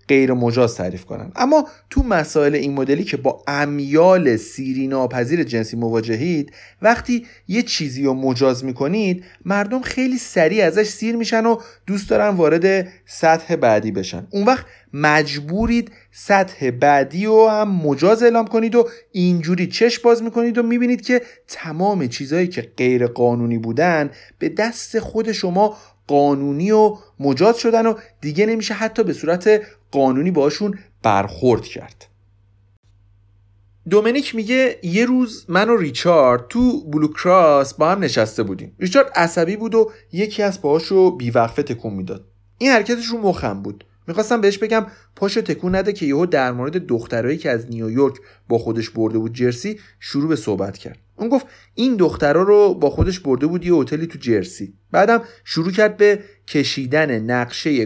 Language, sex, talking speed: Persian, male, 150 wpm